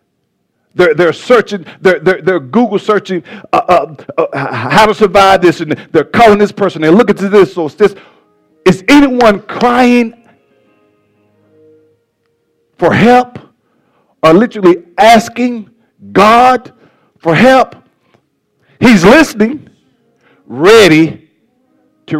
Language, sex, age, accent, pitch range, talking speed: English, male, 50-69, American, 145-205 Hz, 110 wpm